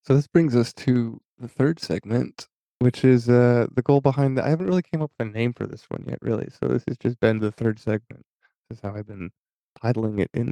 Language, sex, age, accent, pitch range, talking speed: English, male, 20-39, American, 105-125 Hz, 250 wpm